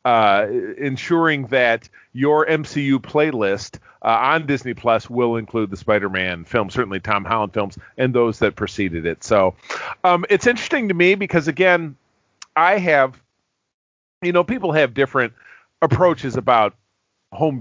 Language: English